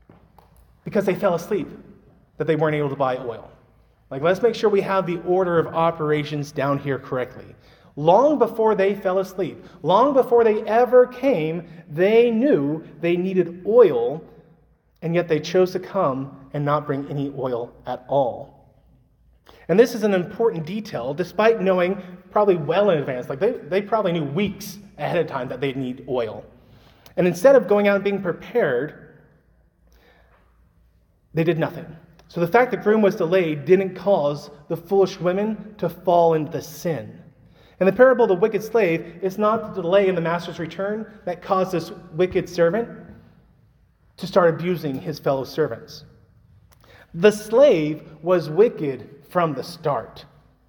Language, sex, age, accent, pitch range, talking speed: English, male, 30-49, American, 150-200 Hz, 165 wpm